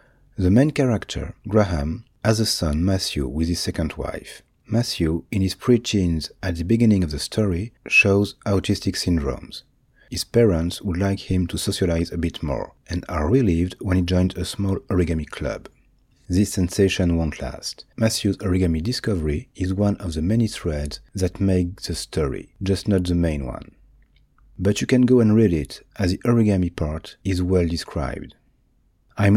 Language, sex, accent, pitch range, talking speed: French, male, French, 85-110 Hz, 170 wpm